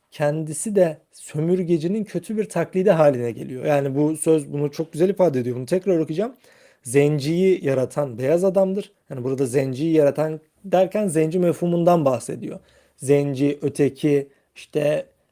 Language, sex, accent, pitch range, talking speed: Turkish, male, native, 145-185 Hz, 135 wpm